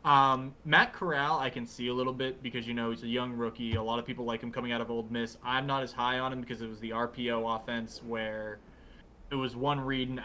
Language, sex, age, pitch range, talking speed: English, male, 20-39, 115-135 Hz, 260 wpm